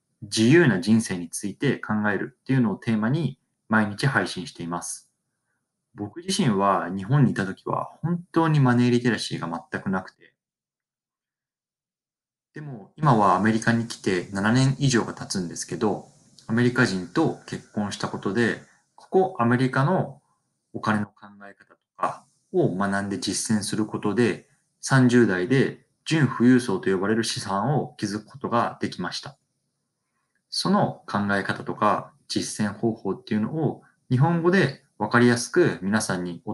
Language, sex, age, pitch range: Japanese, male, 20-39, 100-130 Hz